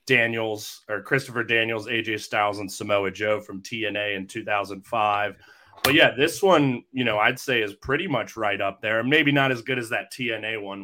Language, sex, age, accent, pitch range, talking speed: English, male, 30-49, American, 105-135 Hz, 195 wpm